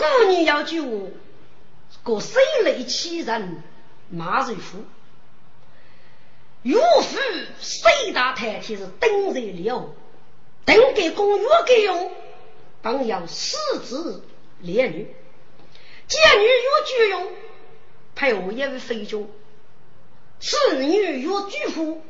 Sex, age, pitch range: female, 50-69, 250-405 Hz